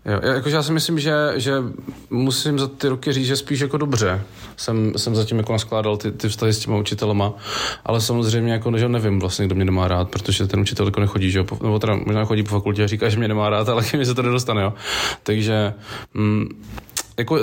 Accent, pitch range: native, 105-120 Hz